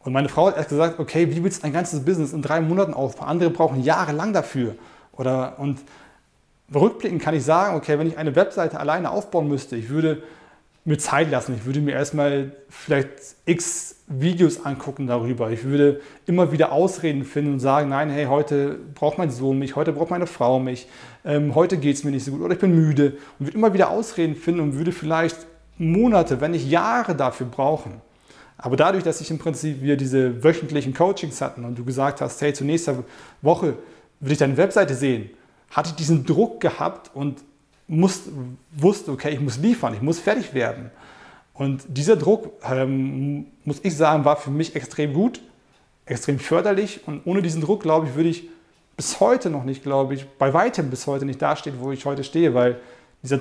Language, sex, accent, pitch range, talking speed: German, male, German, 135-165 Hz, 195 wpm